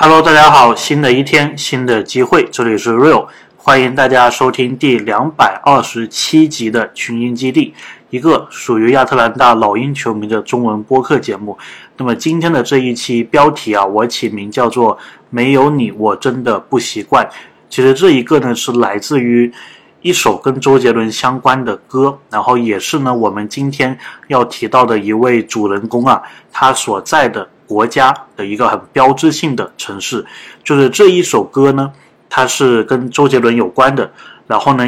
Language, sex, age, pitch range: Chinese, male, 20-39, 115-135 Hz